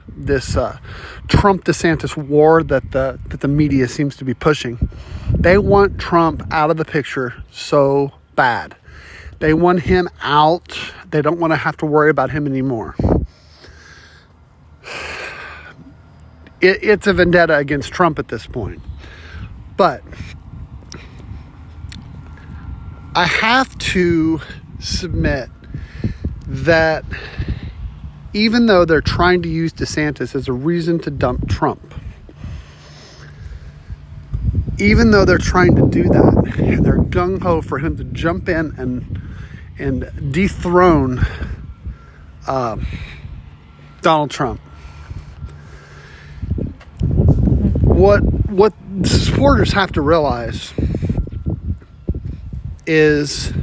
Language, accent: English, American